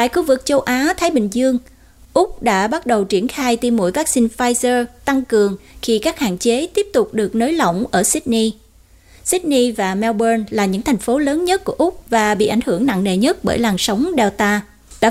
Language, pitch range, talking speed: Vietnamese, 210-285 Hz, 210 wpm